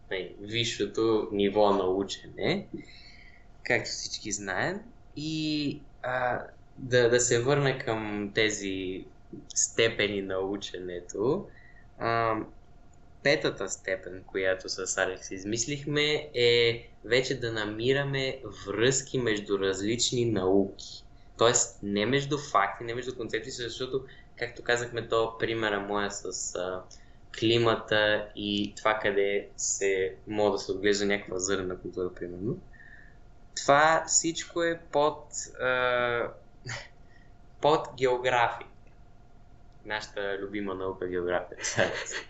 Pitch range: 100-135 Hz